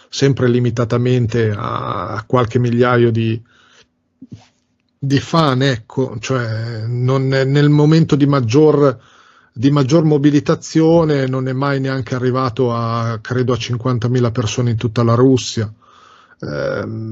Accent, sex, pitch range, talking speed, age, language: native, male, 120-145 Hz, 115 wpm, 40-59, Italian